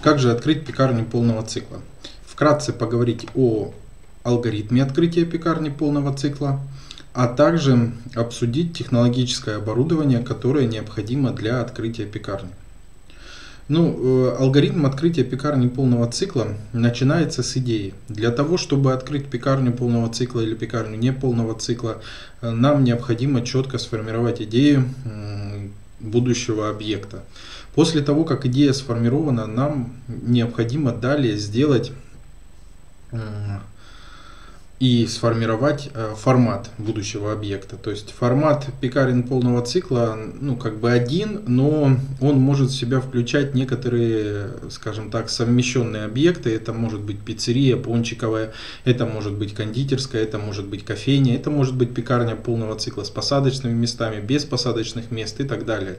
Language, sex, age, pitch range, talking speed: Russian, male, 20-39, 110-135 Hz, 120 wpm